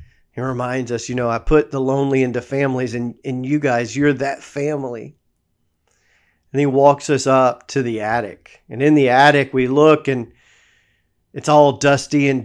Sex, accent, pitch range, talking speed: male, American, 120-150 Hz, 180 wpm